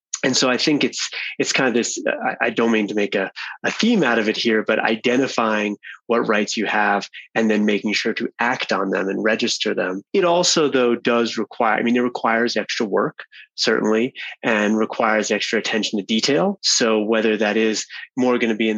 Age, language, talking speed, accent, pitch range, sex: 20-39, English, 210 wpm, American, 105-125 Hz, male